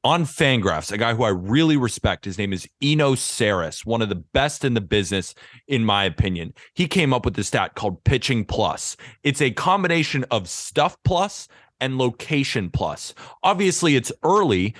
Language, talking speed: English, 180 wpm